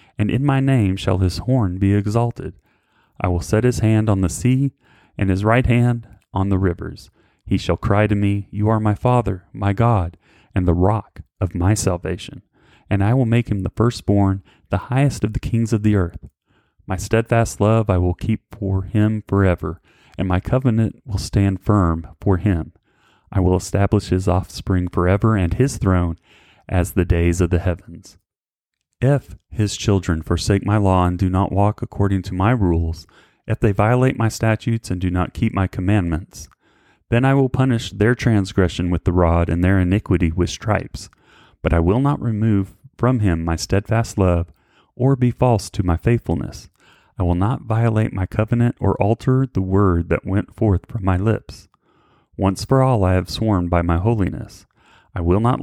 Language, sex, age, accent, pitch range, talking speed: English, male, 30-49, American, 90-115 Hz, 185 wpm